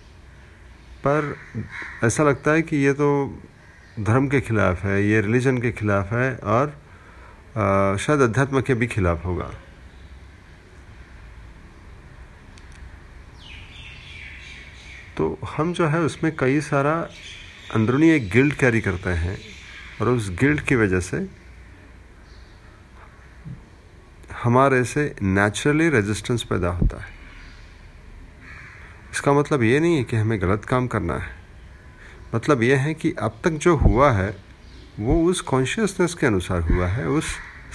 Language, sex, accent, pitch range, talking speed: Hindi, male, native, 85-135 Hz, 120 wpm